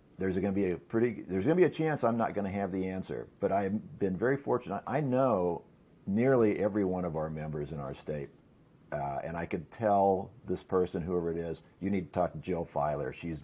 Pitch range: 85-110 Hz